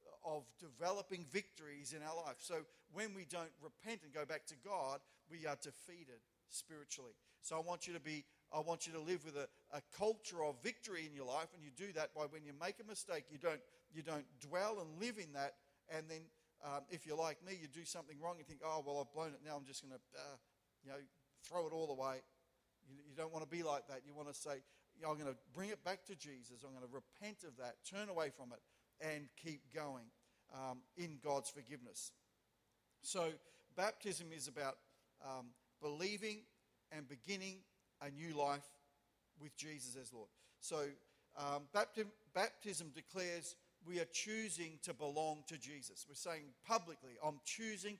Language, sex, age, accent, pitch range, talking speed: English, male, 50-69, Australian, 145-175 Hz, 195 wpm